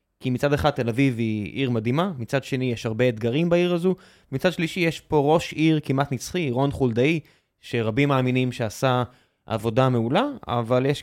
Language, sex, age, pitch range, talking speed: Hebrew, male, 20-39, 120-155 Hz, 175 wpm